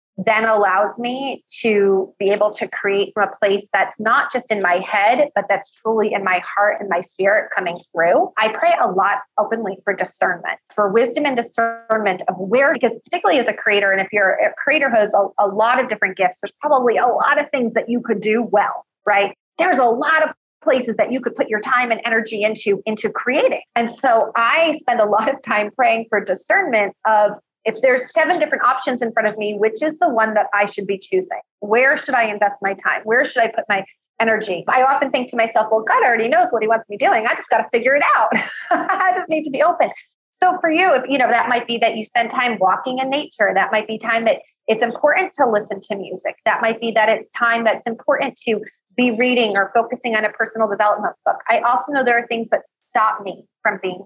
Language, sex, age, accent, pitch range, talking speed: English, female, 30-49, American, 205-260 Hz, 235 wpm